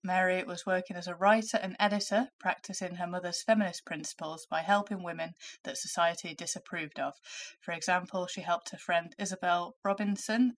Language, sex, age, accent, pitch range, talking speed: English, female, 20-39, British, 170-205 Hz, 160 wpm